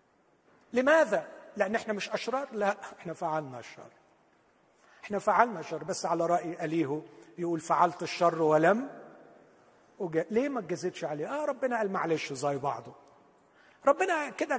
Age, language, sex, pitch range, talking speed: 50-69, Arabic, male, 155-230 Hz, 135 wpm